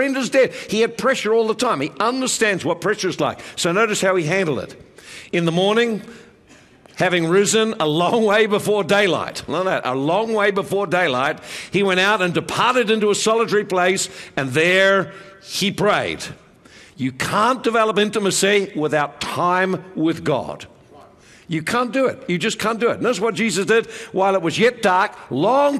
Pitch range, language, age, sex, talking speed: 170-225 Hz, English, 60-79, male, 170 wpm